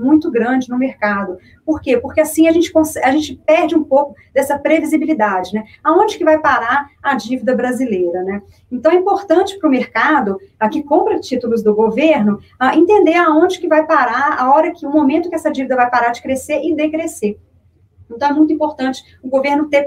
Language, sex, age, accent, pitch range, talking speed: Portuguese, female, 40-59, Brazilian, 225-300 Hz, 200 wpm